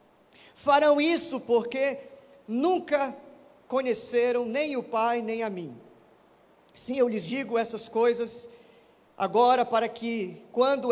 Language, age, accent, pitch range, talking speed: Portuguese, 50-69, Brazilian, 225-285 Hz, 115 wpm